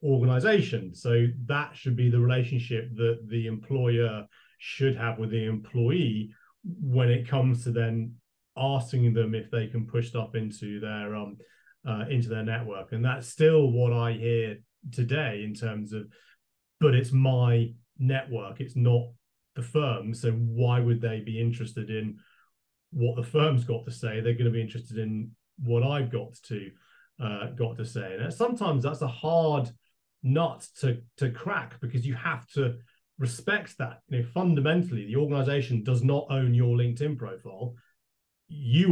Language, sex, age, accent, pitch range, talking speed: English, male, 30-49, British, 115-135 Hz, 165 wpm